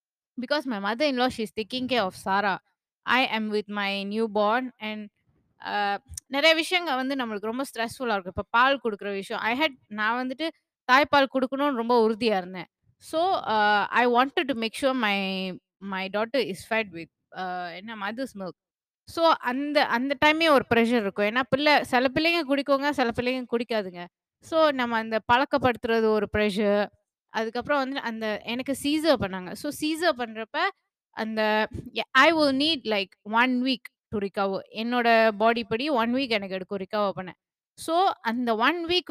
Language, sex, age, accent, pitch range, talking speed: Tamil, female, 20-39, native, 210-280 Hz, 170 wpm